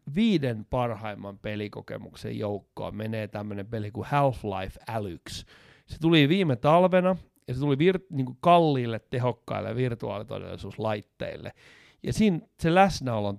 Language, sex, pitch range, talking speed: Finnish, male, 110-150 Hz, 120 wpm